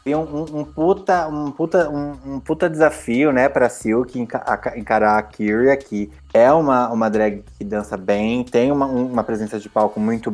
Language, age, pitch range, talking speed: Portuguese, 20-39, 115-155 Hz, 190 wpm